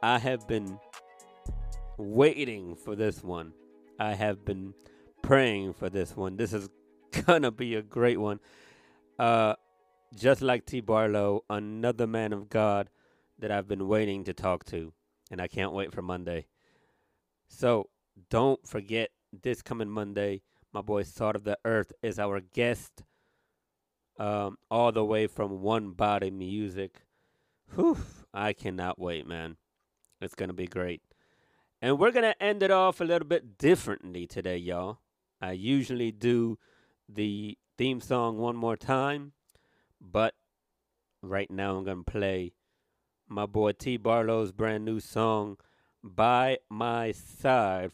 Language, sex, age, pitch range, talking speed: English, male, 30-49, 95-115 Hz, 145 wpm